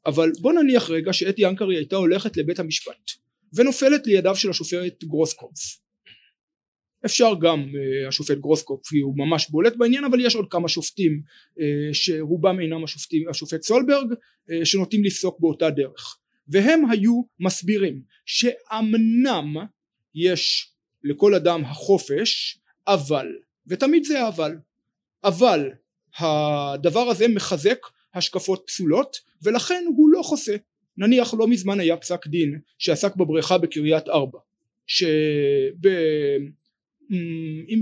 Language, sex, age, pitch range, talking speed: Hebrew, male, 30-49, 155-205 Hz, 115 wpm